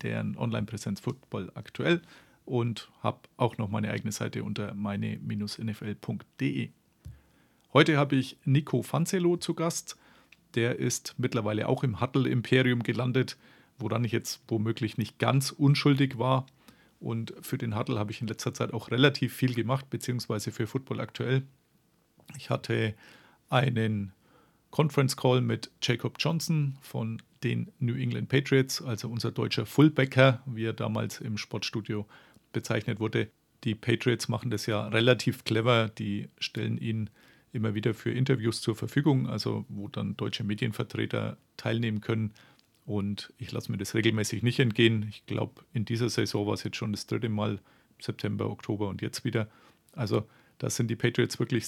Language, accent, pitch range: German, German, 110-130 Hz